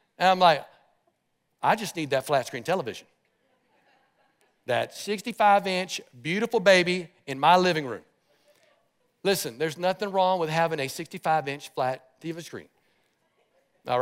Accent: American